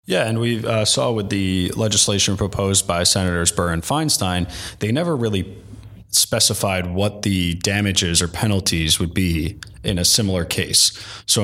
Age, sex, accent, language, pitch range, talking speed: 20-39, male, American, English, 90-105 Hz, 150 wpm